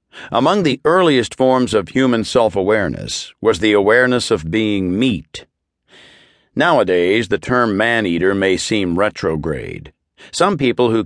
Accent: American